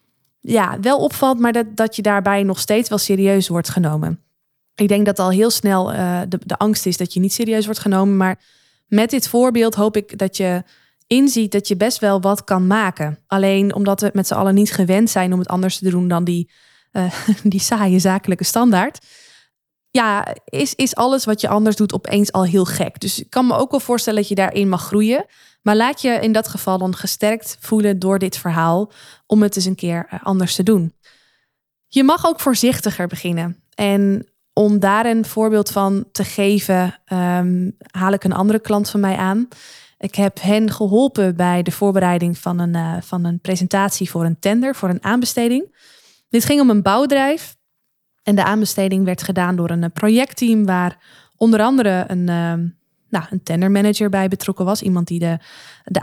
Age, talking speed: 20-39, 190 wpm